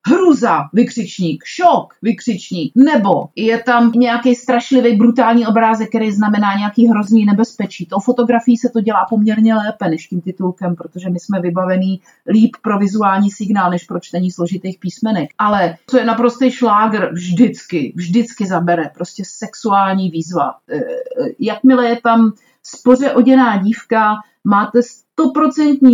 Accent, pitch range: native, 200-240 Hz